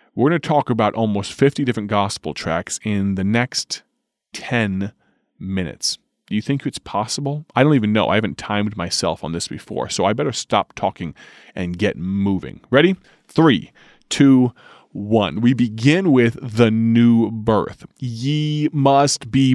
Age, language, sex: 30-49, English, male